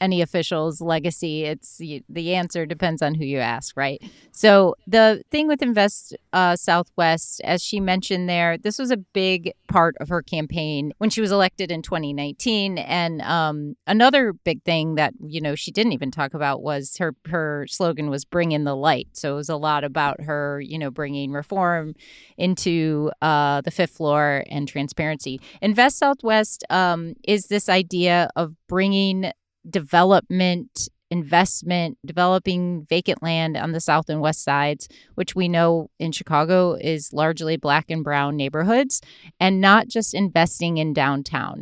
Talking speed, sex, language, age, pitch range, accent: 165 wpm, female, English, 30-49, 150-190 Hz, American